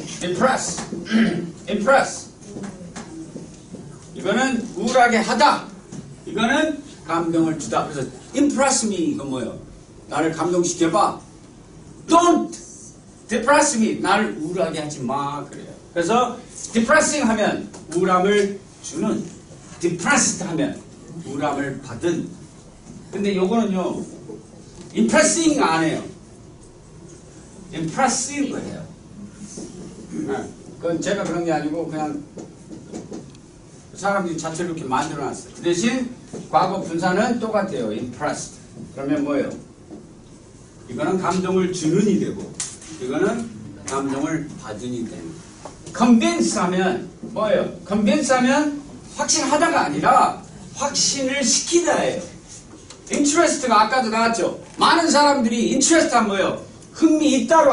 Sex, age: male, 40-59